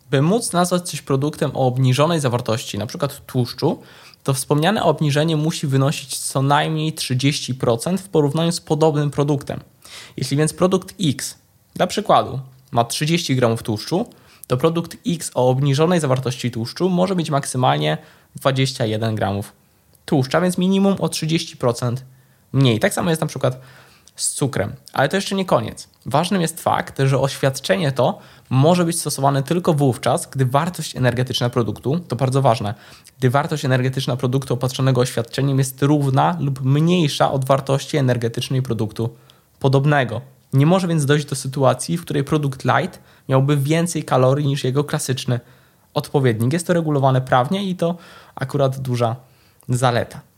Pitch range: 125-155 Hz